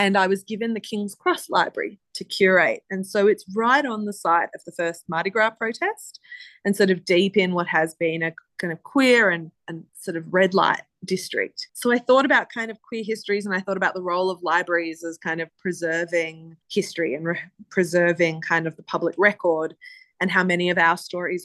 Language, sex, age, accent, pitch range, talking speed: English, female, 20-39, Australian, 170-220 Hz, 215 wpm